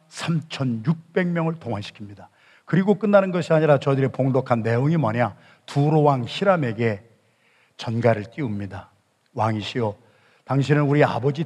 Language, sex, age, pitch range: Korean, male, 50-69, 120-155 Hz